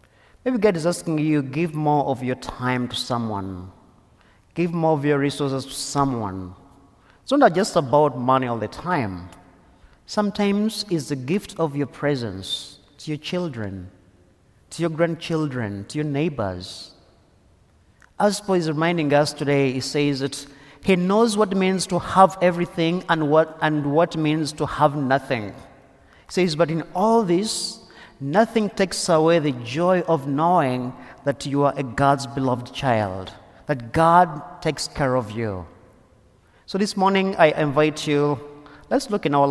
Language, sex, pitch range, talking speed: English, male, 120-165 Hz, 160 wpm